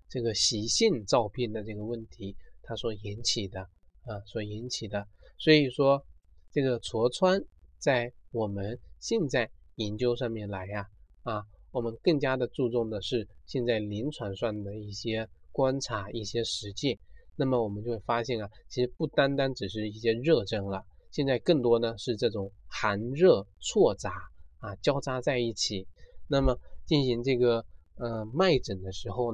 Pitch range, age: 100-125 Hz, 20-39